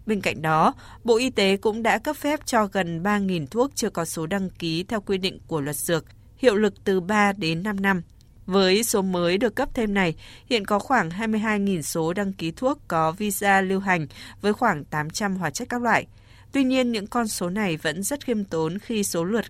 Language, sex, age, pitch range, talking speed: Vietnamese, female, 20-39, 170-220 Hz, 220 wpm